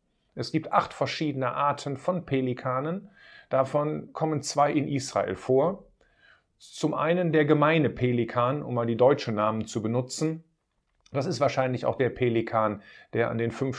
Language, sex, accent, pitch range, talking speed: German, male, German, 120-155 Hz, 150 wpm